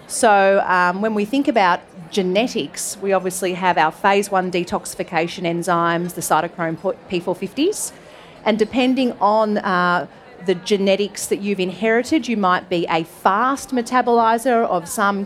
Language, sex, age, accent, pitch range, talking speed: English, female, 30-49, Australian, 175-215 Hz, 140 wpm